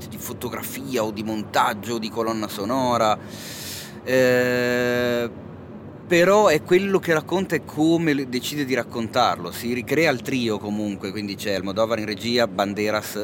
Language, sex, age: Italian, male, 30-49